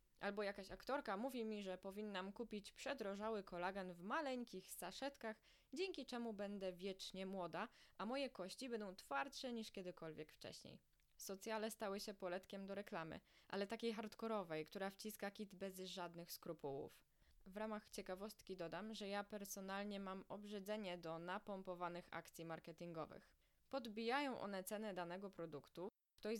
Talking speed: 135 wpm